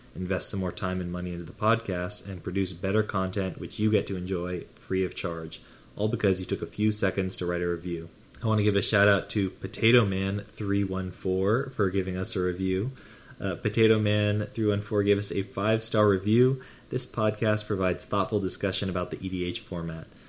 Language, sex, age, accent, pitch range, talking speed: English, male, 20-39, American, 95-110 Hz, 180 wpm